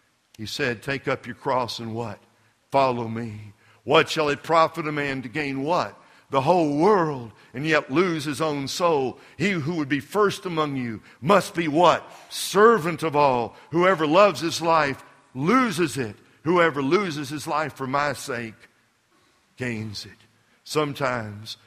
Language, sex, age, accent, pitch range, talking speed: English, male, 60-79, American, 115-160 Hz, 160 wpm